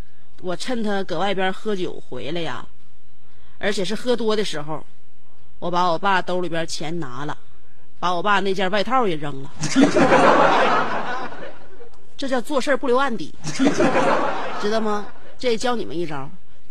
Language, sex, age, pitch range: Chinese, female, 30-49, 175-240 Hz